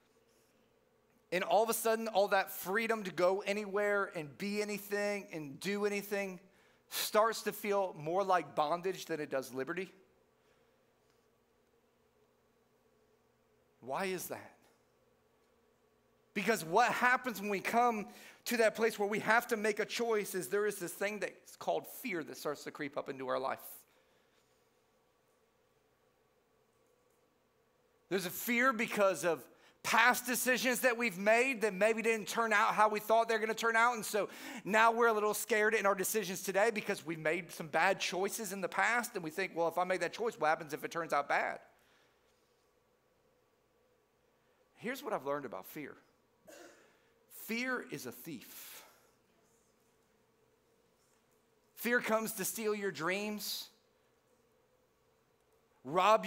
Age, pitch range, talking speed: 40-59, 190-230 Hz, 145 wpm